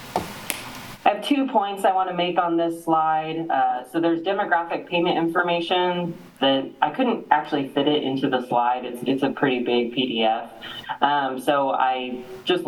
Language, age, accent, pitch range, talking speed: English, 20-39, American, 125-170 Hz, 165 wpm